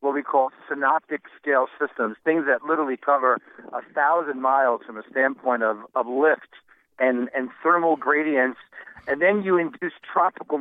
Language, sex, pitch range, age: English, male, 135-165 Hz, 50-69